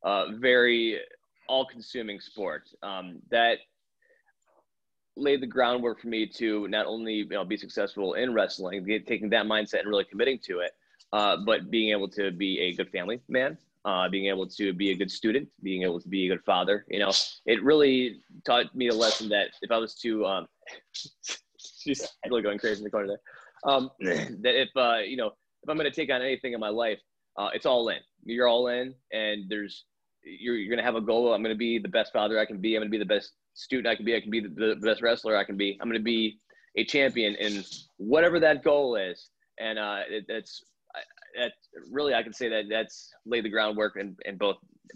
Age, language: 20-39, English